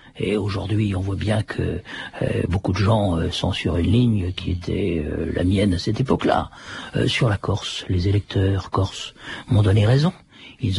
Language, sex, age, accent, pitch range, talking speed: French, male, 50-69, French, 95-115 Hz, 185 wpm